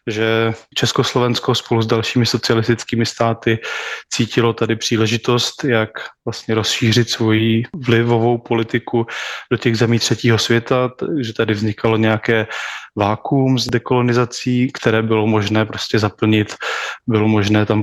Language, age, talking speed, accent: Czech, 20-39, 125 wpm, native